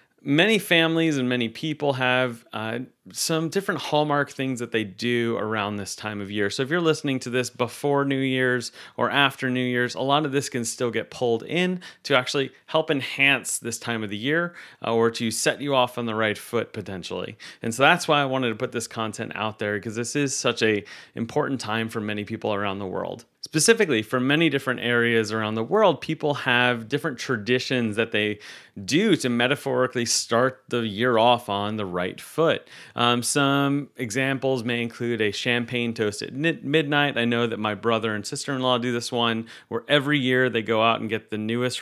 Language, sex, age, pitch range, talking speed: English, male, 30-49, 110-135 Hz, 200 wpm